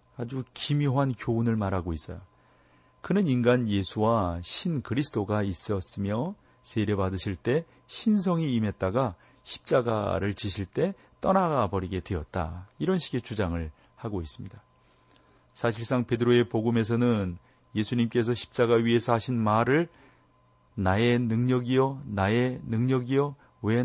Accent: native